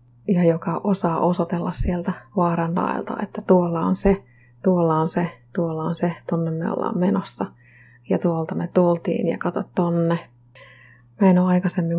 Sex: female